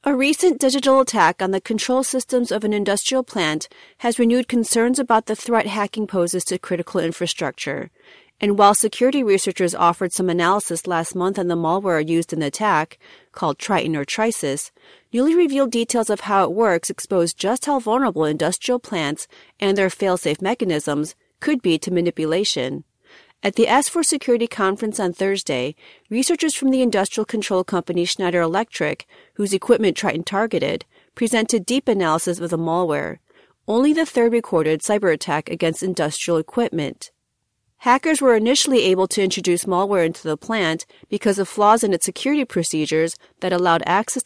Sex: female